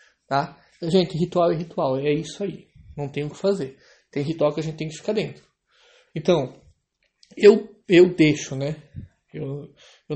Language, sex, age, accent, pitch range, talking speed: Portuguese, male, 20-39, Brazilian, 145-180 Hz, 165 wpm